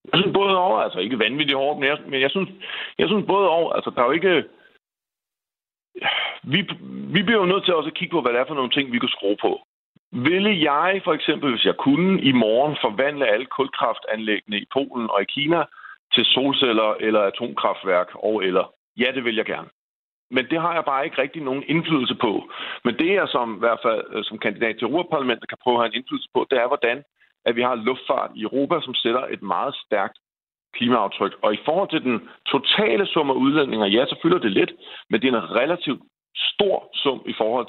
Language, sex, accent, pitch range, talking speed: Danish, male, native, 115-165 Hz, 215 wpm